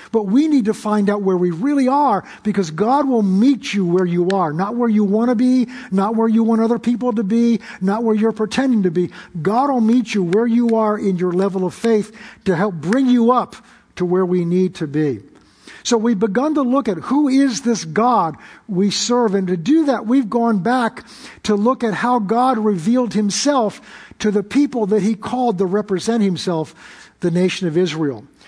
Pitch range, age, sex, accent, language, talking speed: 195-240 Hz, 50-69, male, American, English, 210 wpm